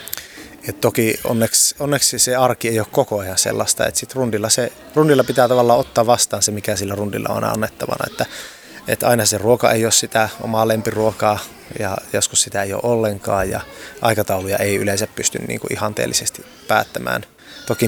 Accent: native